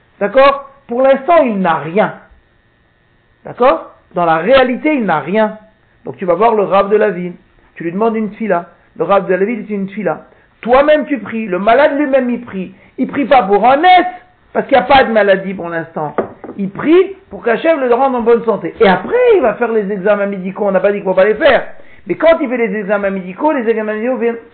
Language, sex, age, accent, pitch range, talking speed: French, male, 60-79, French, 195-260 Hz, 235 wpm